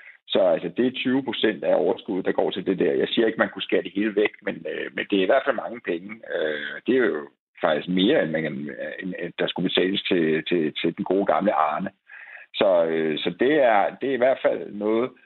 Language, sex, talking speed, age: Danish, male, 245 wpm, 60-79